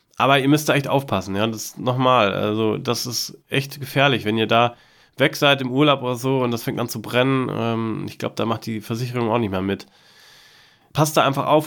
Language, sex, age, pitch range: German, male, 30-49, 115-145 Hz